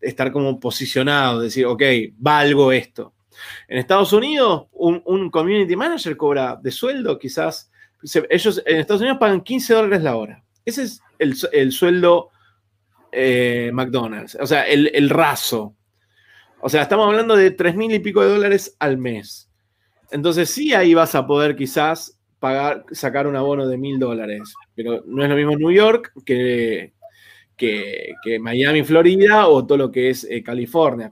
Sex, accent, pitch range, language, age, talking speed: male, Argentinian, 130-185 Hz, Spanish, 20-39, 165 wpm